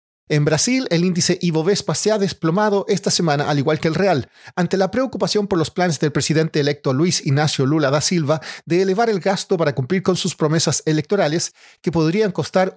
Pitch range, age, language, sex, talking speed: 145-190 Hz, 40-59, Spanish, male, 195 wpm